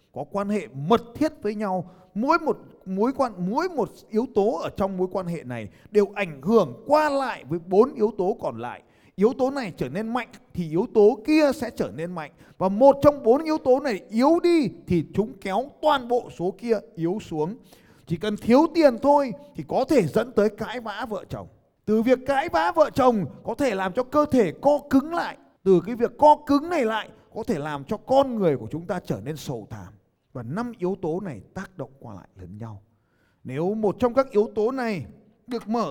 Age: 20-39